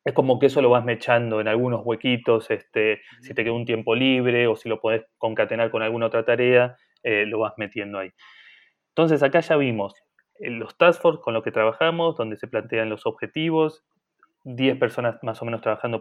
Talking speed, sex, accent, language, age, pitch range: 195 wpm, male, Argentinian, Spanish, 20-39, 115-140 Hz